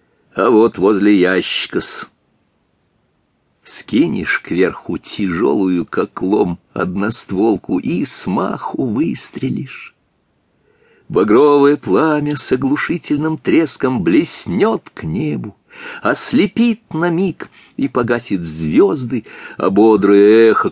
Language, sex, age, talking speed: English, male, 50-69, 85 wpm